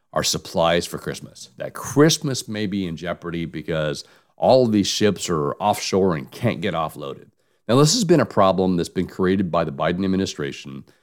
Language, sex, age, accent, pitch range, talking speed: English, male, 50-69, American, 85-110 Hz, 185 wpm